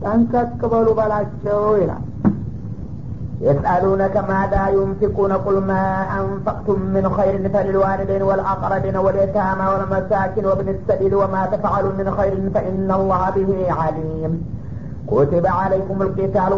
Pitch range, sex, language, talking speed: 190-245 Hz, male, Amharic, 105 wpm